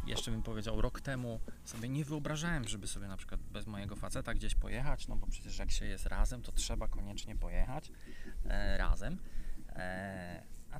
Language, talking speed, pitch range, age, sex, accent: Polish, 165 wpm, 80-110 Hz, 20-39, male, native